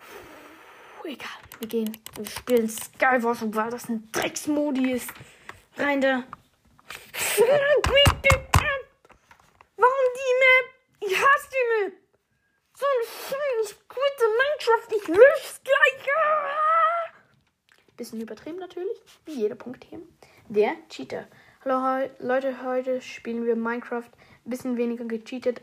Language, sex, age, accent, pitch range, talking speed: German, female, 20-39, German, 230-305 Hz, 115 wpm